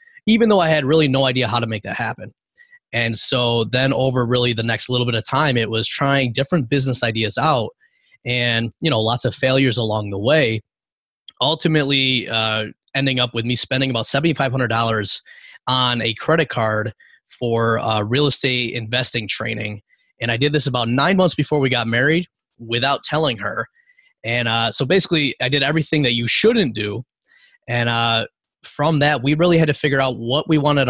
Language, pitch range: English, 115-140 Hz